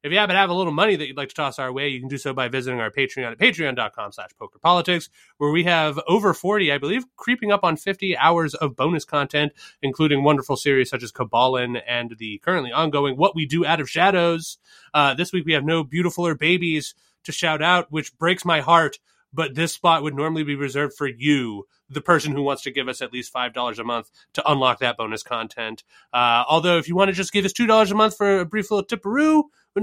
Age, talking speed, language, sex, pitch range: 30-49, 235 wpm, English, male, 130-185 Hz